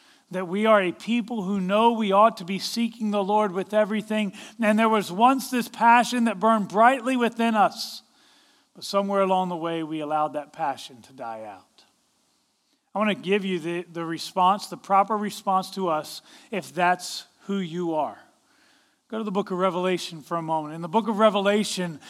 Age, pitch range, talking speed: 40-59, 195-255 Hz, 195 wpm